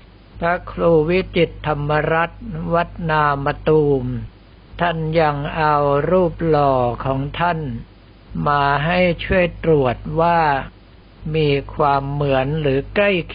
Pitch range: 130-160 Hz